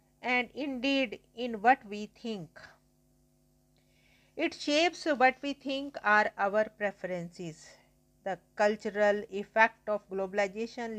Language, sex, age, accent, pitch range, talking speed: English, female, 50-69, Indian, 200-240 Hz, 105 wpm